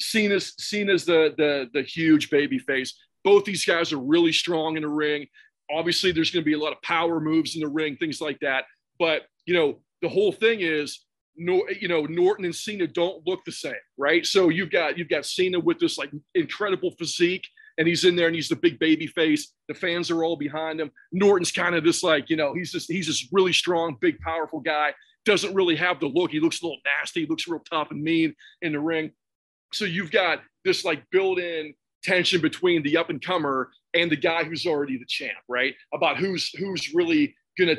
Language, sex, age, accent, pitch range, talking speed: English, male, 40-59, American, 155-195 Hz, 215 wpm